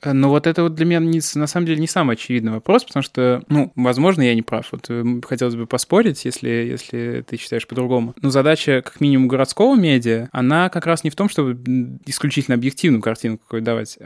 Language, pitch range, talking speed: Russian, 120-145 Hz, 205 wpm